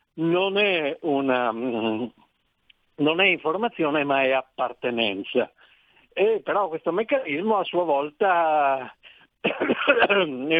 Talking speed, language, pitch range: 95 wpm, Italian, 130-180 Hz